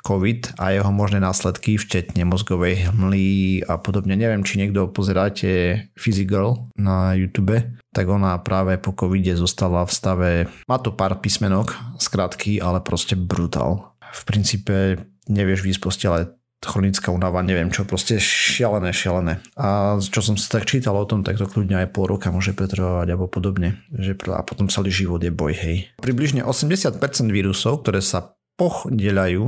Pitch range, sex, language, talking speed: 95-110 Hz, male, Slovak, 160 wpm